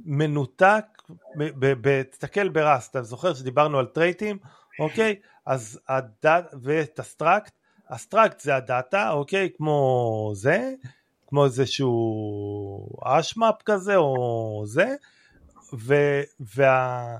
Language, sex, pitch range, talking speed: Hebrew, male, 130-175 Hz, 90 wpm